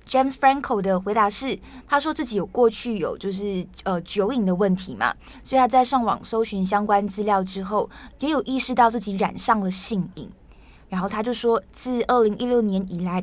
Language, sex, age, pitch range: Chinese, female, 20-39, 190-235 Hz